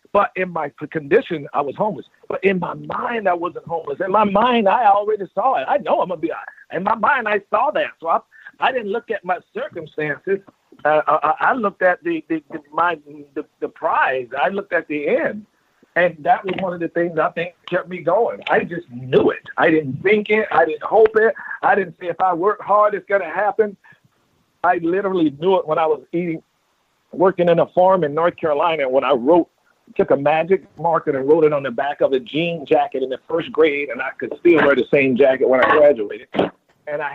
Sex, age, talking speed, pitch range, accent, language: male, 50-69, 225 wpm, 155-200 Hz, American, English